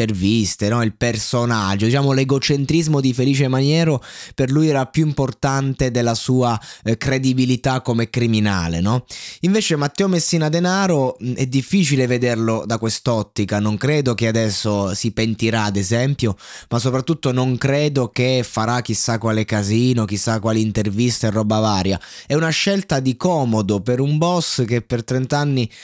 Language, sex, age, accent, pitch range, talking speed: Italian, male, 20-39, native, 115-140 Hz, 155 wpm